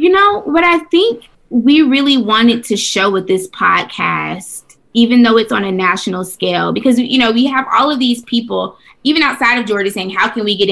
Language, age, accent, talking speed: English, 20-39, American, 215 wpm